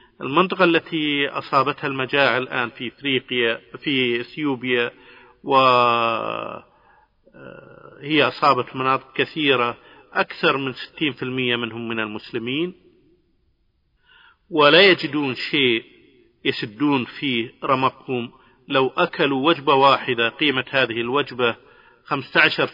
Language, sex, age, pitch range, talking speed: Arabic, male, 50-69, 125-150 Hz, 85 wpm